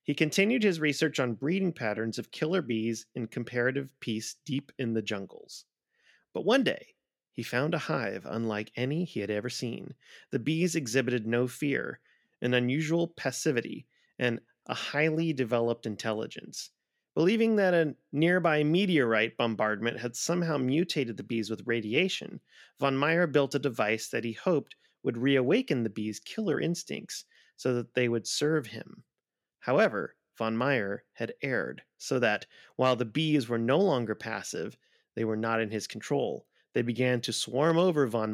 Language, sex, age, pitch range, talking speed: English, male, 30-49, 115-155 Hz, 160 wpm